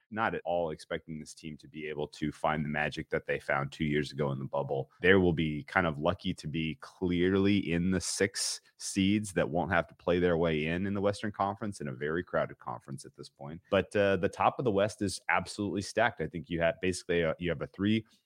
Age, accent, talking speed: 30-49, American, 245 wpm